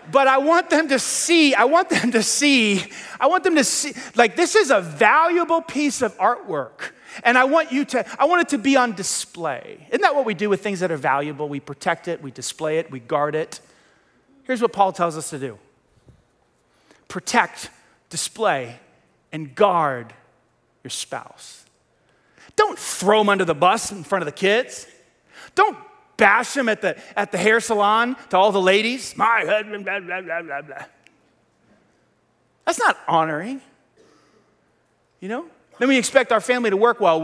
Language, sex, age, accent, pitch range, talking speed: English, male, 30-49, American, 185-275 Hz, 180 wpm